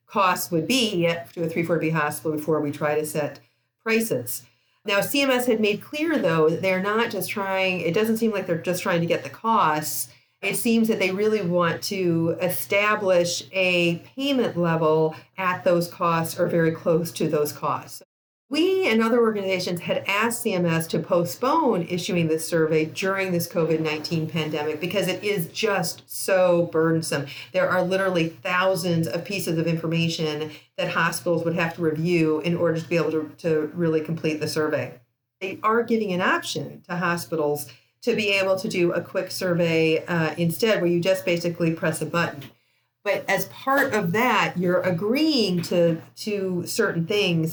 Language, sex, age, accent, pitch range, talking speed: English, female, 40-59, American, 160-190 Hz, 175 wpm